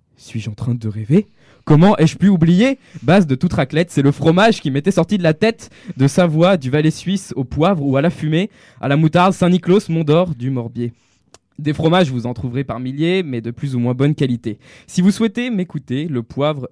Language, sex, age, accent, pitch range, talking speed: French, male, 20-39, French, 125-175 Hz, 220 wpm